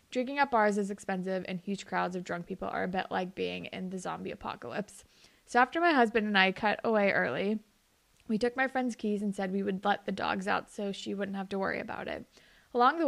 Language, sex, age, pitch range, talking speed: English, female, 20-39, 195-240 Hz, 240 wpm